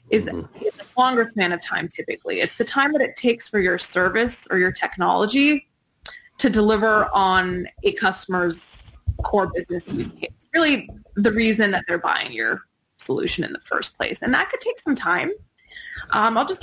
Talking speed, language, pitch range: 180 wpm, English, 180-220 Hz